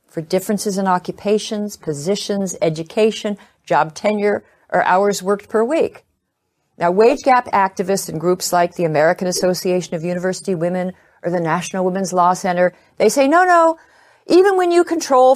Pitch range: 175-215 Hz